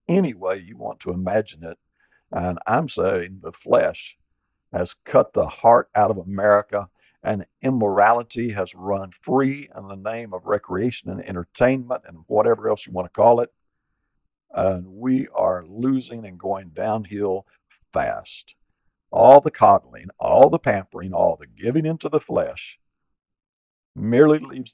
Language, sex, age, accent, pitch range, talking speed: English, male, 60-79, American, 100-135 Hz, 150 wpm